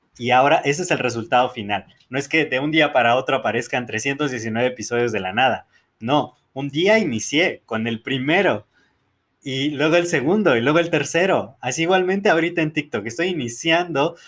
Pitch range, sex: 125-165 Hz, male